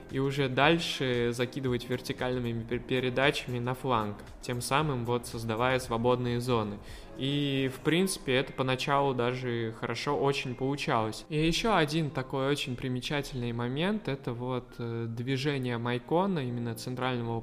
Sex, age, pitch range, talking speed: male, 20-39, 115-140 Hz, 125 wpm